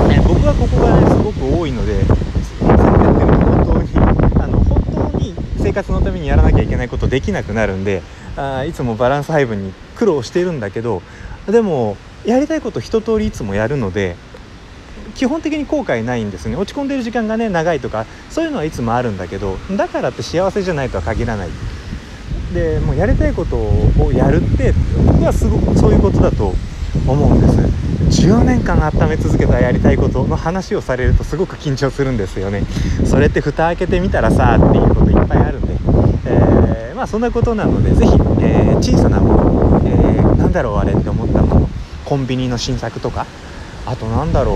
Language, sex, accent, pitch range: Japanese, male, native, 95-160 Hz